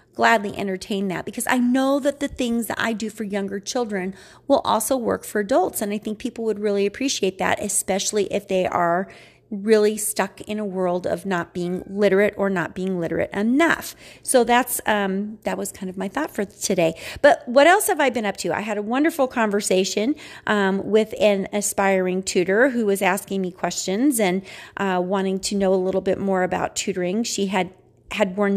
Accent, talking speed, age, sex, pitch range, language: American, 200 wpm, 30-49, female, 185-220 Hz, English